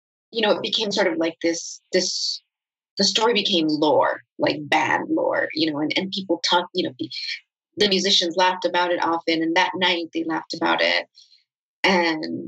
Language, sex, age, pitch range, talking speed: English, female, 30-49, 165-200 Hz, 190 wpm